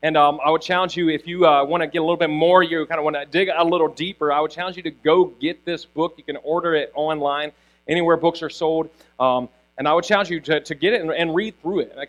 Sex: male